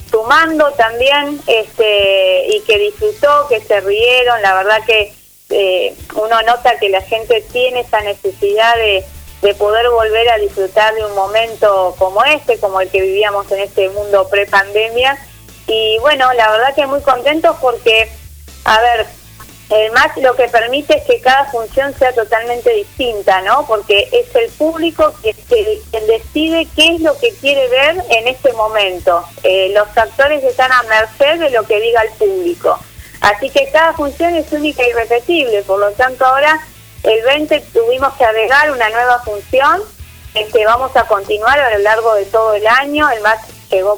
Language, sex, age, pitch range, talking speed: Spanish, female, 20-39, 210-280 Hz, 170 wpm